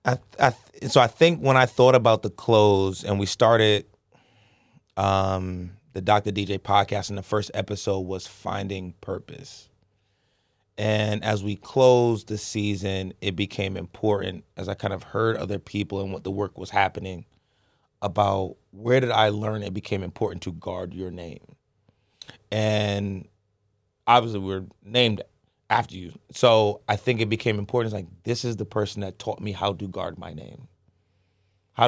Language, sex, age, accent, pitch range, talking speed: English, male, 30-49, American, 100-110 Hz, 170 wpm